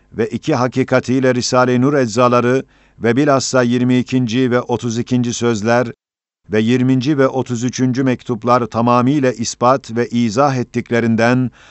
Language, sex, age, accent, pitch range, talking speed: Turkish, male, 50-69, native, 120-130 Hz, 115 wpm